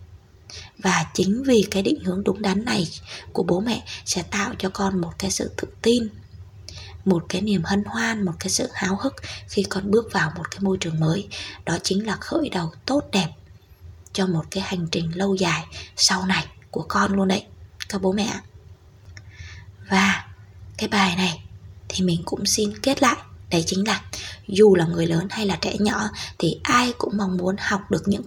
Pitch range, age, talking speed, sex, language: 155-200 Hz, 20-39, 195 wpm, female, Vietnamese